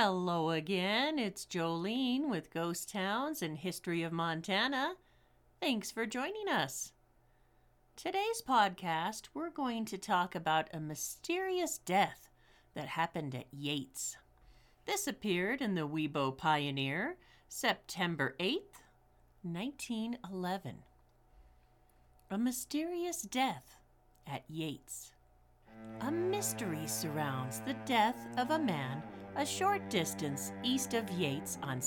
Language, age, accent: English, 50-69, American